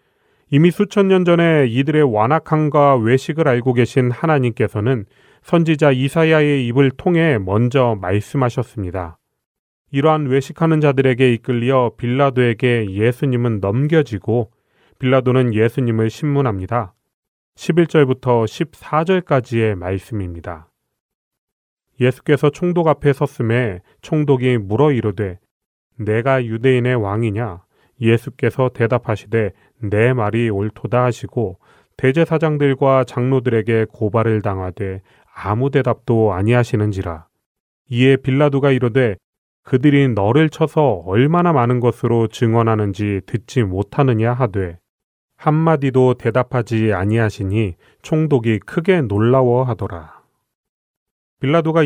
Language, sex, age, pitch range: Korean, male, 30-49, 110-140 Hz